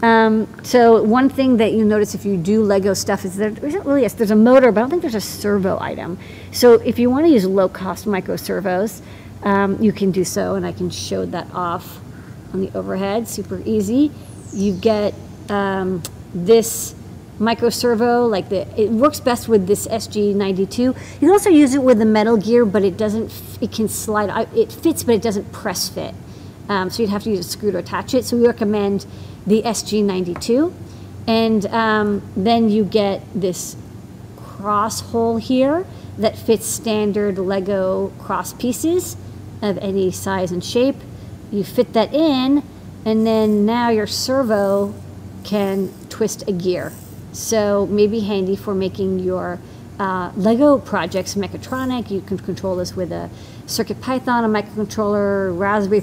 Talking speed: 170 wpm